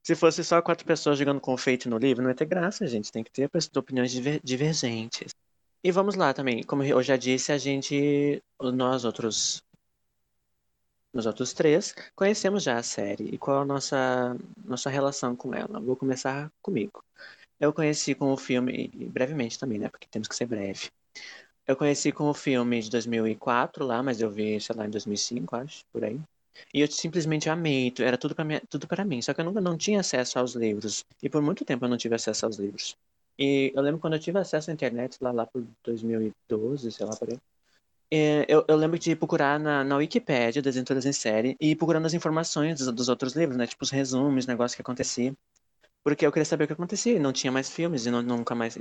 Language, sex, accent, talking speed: Portuguese, male, Brazilian, 210 wpm